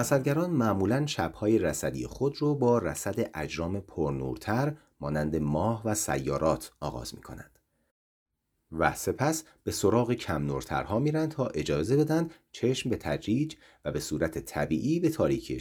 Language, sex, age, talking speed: Persian, male, 40-59, 135 wpm